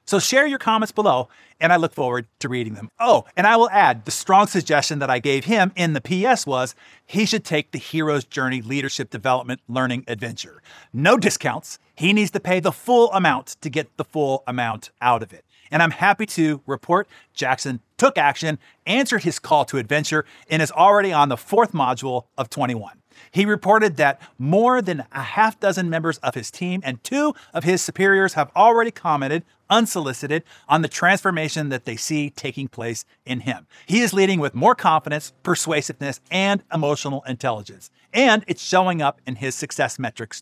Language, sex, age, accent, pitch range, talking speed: English, male, 40-59, American, 135-190 Hz, 190 wpm